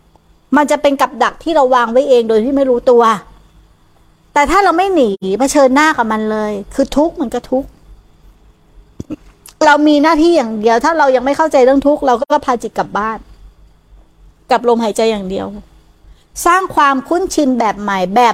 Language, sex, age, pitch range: Thai, female, 60-79, 190-275 Hz